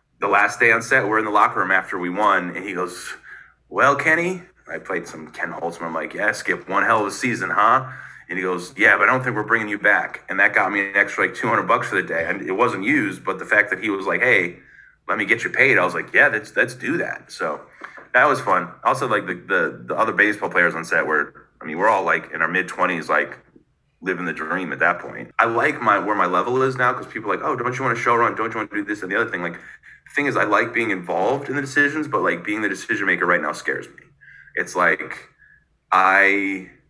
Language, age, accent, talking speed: English, 30-49, American, 265 wpm